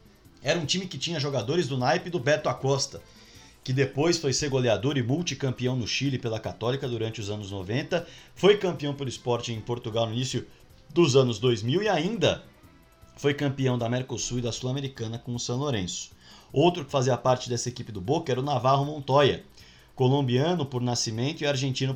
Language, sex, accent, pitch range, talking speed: Portuguese, male, Brazilian, 115-140 Hz, 185 wpm